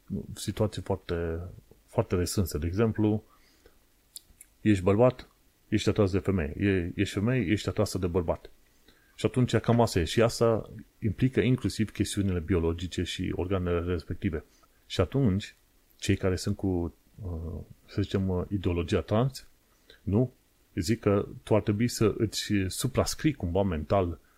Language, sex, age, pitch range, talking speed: Romanian, male, 30-49, 95-115 Hz, 130 wpm